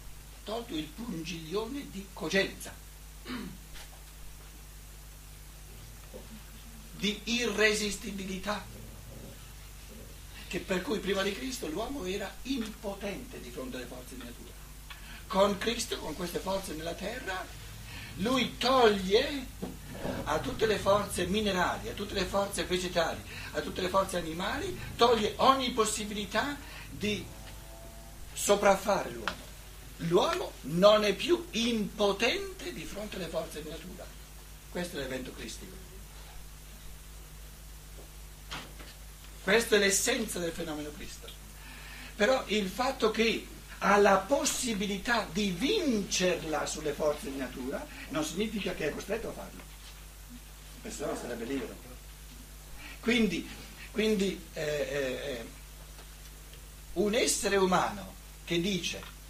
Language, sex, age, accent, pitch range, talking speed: Italian, male, 60-79, native, 145-215 Hz, 105 wpm